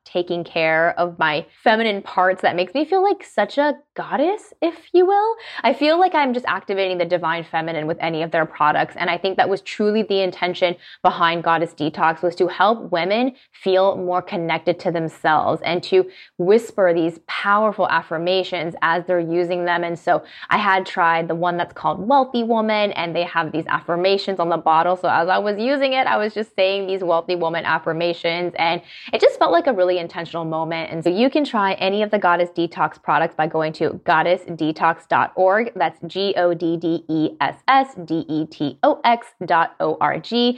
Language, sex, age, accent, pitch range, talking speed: English, female, 20-39, American, 170-220 Hz, 200 wpm